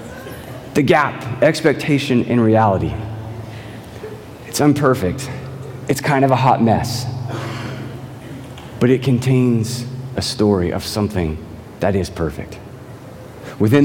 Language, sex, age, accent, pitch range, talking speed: English, male, 30-49, American, 105-125 Hz, 105 wpm